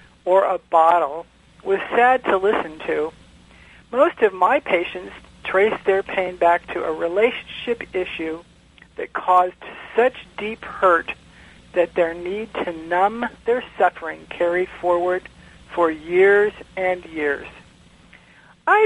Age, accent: 60-79, American